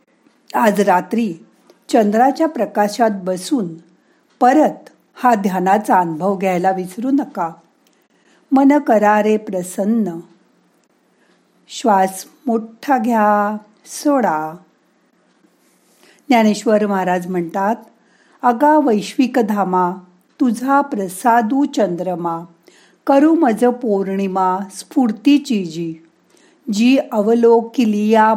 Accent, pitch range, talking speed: native, 185-250 Hz, 75 wpm